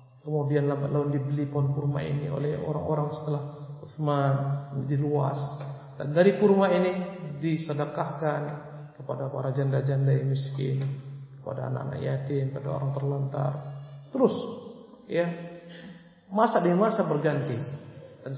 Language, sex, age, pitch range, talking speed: Indonesian, male, 50-69, 140-190 Hz, 110 wpm